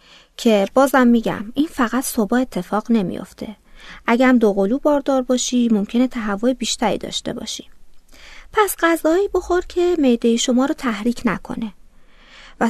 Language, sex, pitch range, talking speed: Persian, female, 205-280 Hz, 130 wpm